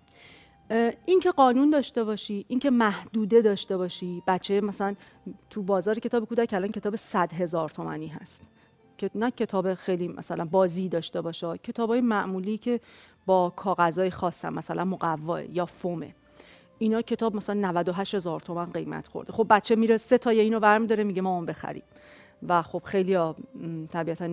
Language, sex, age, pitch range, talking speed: Persian, female, 40-59, 175-230 Hz, 160 wpm